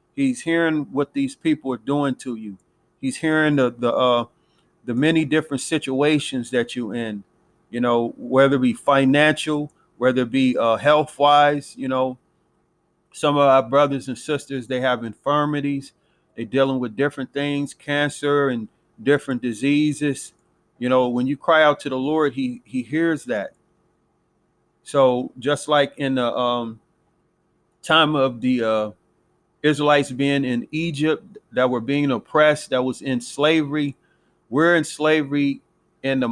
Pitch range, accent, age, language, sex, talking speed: 125-150 Hz, American, 40-59, English, male, 150 wpm